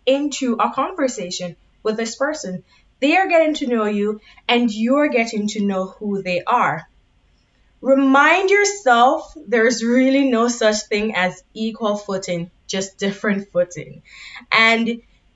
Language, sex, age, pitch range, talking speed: English, female, 20-39, 190-265 Hz, 135 wpm